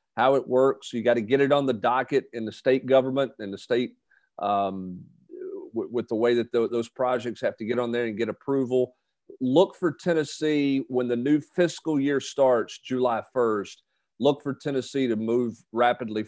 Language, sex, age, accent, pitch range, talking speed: English, male, 40-59, American, 110-130 Hz, 185 wpm